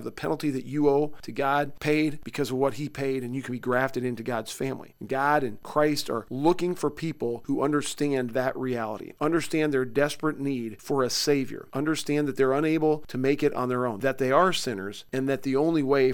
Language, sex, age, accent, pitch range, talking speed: English, male, 40-59, American, 120-145 Hz, 215 wpm